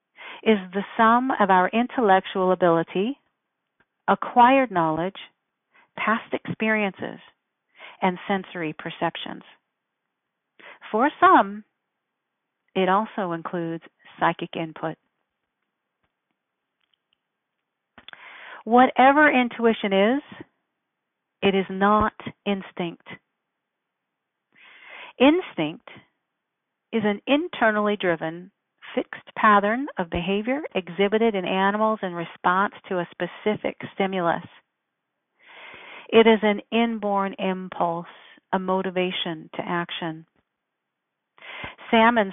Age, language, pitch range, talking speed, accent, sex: 50-69, English, 180-225 Hz, 80 wpm, American, female